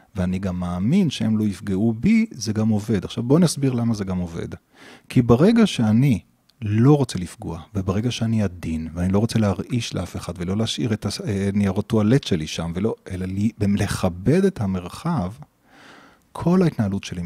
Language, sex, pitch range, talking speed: Hebrew, male, 100-140 Hz, 170 wpm